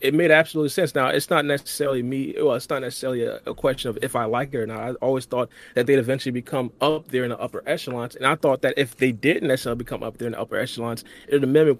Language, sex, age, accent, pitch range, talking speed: English, male, 30-49, American, 125-150 Hz, 275 wpm